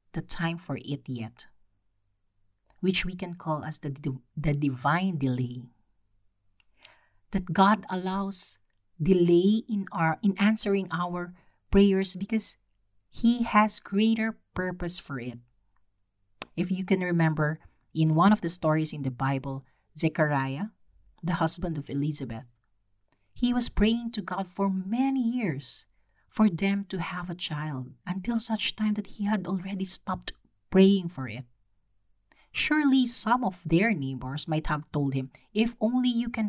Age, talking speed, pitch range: 40-59, 140 wpm, 125-195 Hz